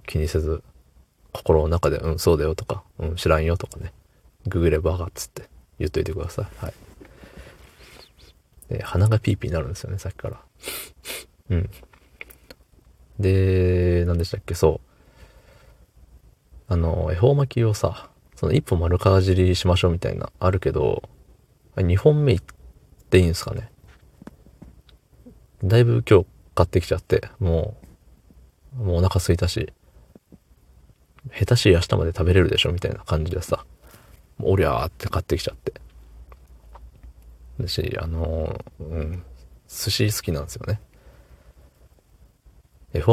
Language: Japanese